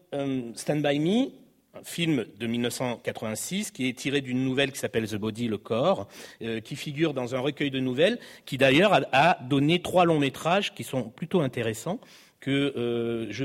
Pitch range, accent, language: 130-175 Hz, French, French